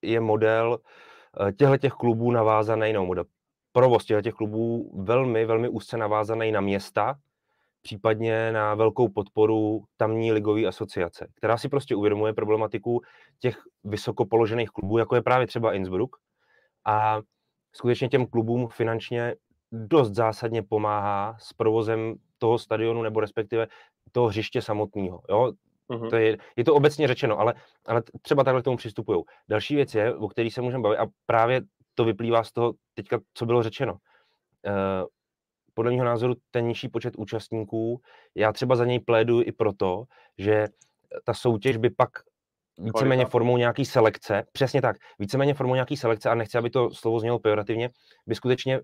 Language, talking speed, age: Czech, 150 wpm, 30-49